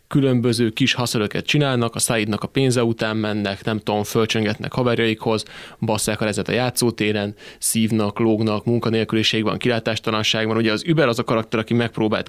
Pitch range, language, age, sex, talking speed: 110-130 Hz, Hungarian, 20-39, male, 155 wpm